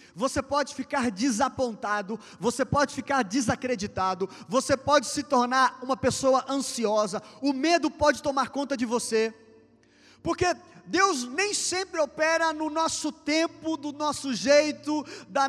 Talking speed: 130 wpm